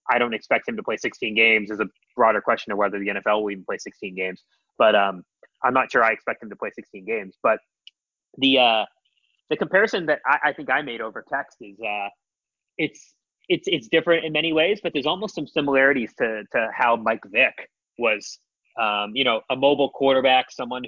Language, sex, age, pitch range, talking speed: English, male, 20-39, 105-135 Hz, 210 wpm